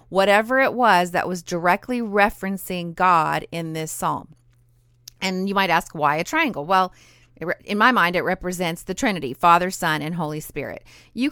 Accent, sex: American, female